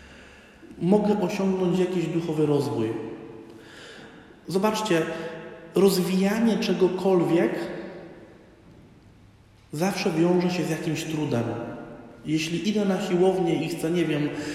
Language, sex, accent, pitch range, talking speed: Polish, male, native, 145-180 Hz, 90 wpm